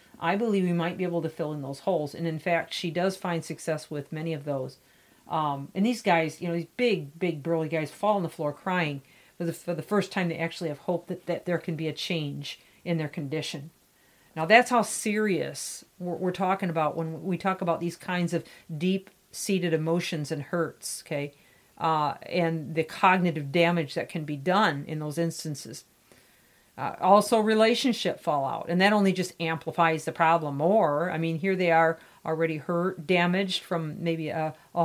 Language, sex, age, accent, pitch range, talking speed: English, female, 50-69, American, 160-190 Hz, 195 wpm